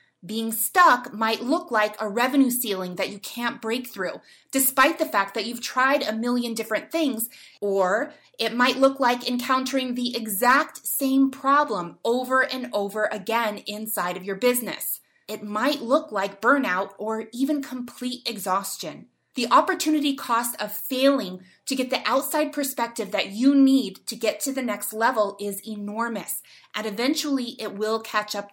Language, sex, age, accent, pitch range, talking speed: English, female, 30-49, American, 205-270 Hz, 160 wpm